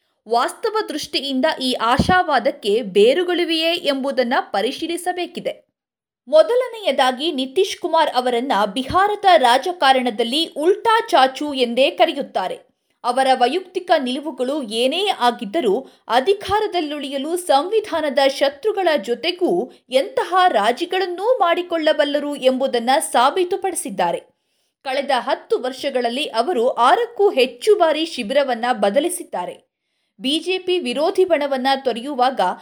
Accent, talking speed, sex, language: native, 85 wpm, female, Kannada